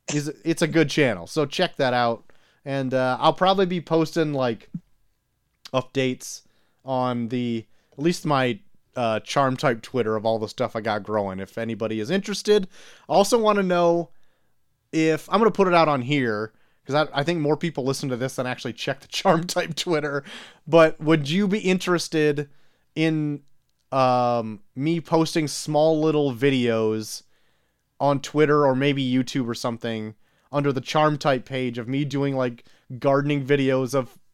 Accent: American